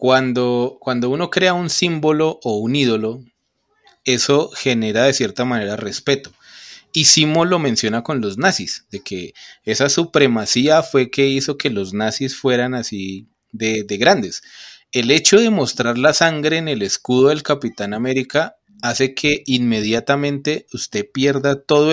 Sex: male